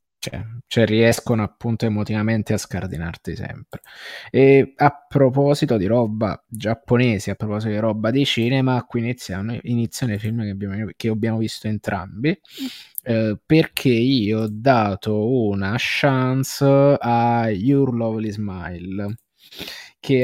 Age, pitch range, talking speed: 20-39, 105-130 Hz, 130 wpm